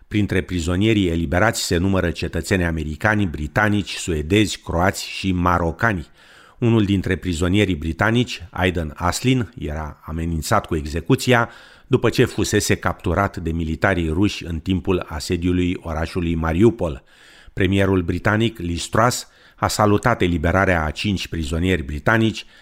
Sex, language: male, Romanian